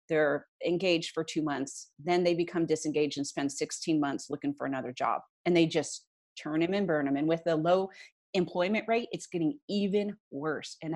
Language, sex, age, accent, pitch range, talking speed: English, female, 30-49, American, 155-205 Hz, 195 wpm